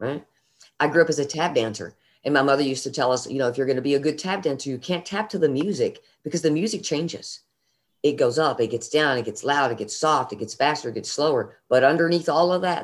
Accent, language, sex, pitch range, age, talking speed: American, English, female, 130-160 Hz, 40-59, 275 wpm